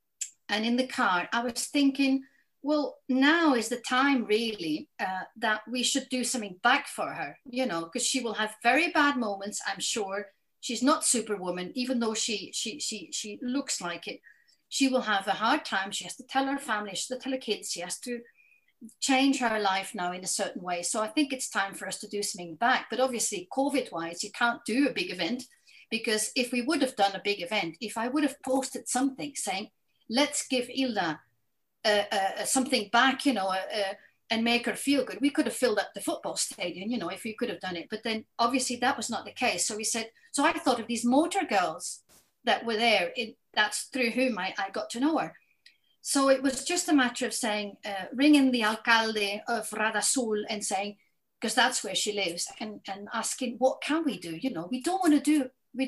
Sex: female